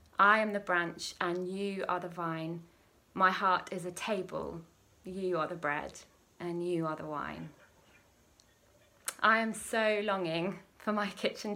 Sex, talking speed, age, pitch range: female, 155 wpm, 20-39, 180-210 Hz